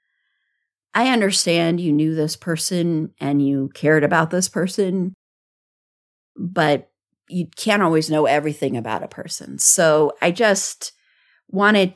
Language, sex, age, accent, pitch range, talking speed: English, female, 30-49, American, 155-215 Hz, 125 wpm